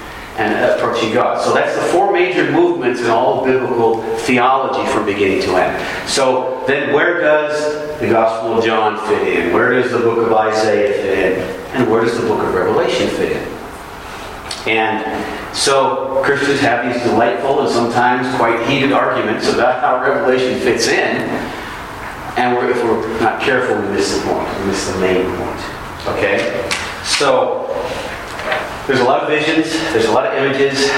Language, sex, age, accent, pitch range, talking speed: English, male, 40-59, American, 110-160 Hz, 165 wpm